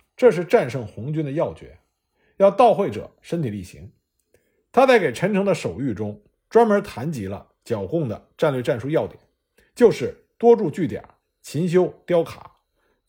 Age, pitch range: 50-69, 130-205 Hz